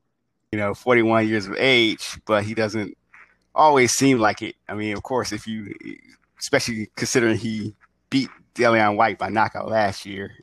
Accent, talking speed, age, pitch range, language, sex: American, 165 wpm, 20-39, 105-115 Hz, English, male